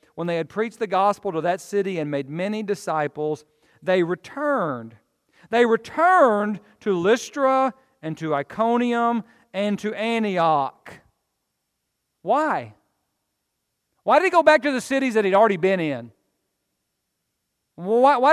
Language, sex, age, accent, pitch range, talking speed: English, male, 40-59, American, 175-240 Hz, 135 wpm